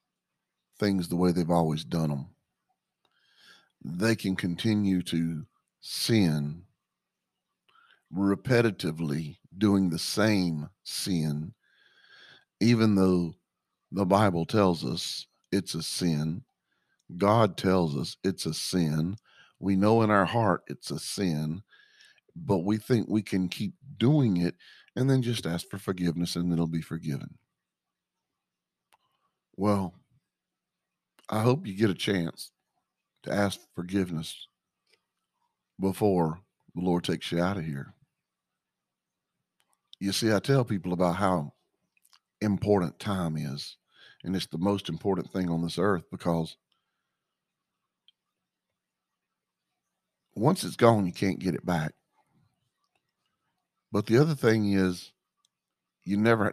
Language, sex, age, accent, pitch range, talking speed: English, male, 50-69, American, 85-105 Hz, 120 wpm